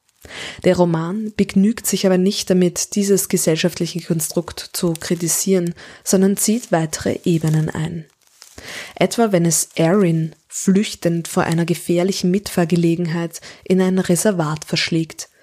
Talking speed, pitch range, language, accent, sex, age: 115 wpm, 165-195 Hz, German, German, female, 20-39